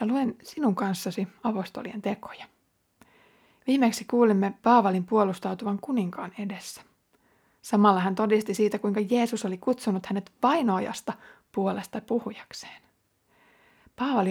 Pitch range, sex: 190-235 Hz, female